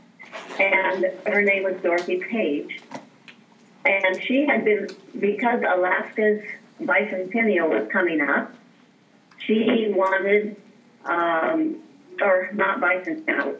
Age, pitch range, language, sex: 40-59, 185-230 Hz, English, female